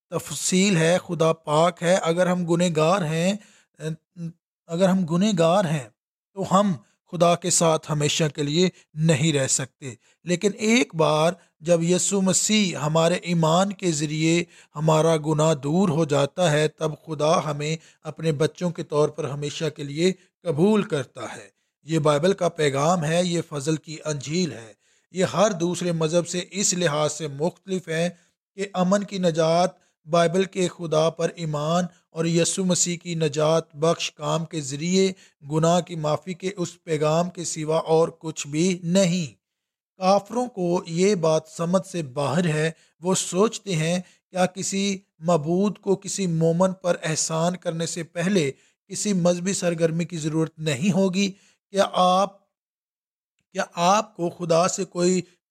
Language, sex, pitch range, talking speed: English, male, 160-185 Hz, 155 wpm